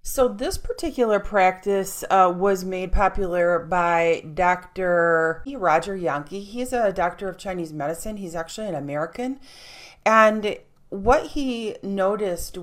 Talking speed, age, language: 130 wpm, 30-49, English